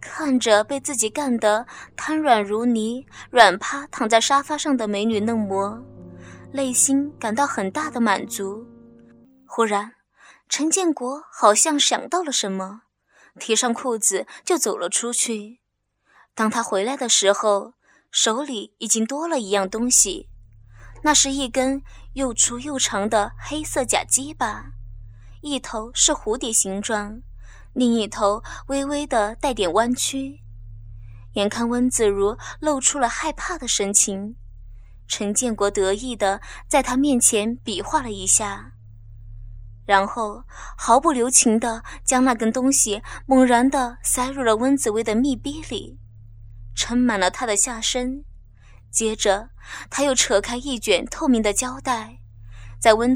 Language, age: Chinese, 20-39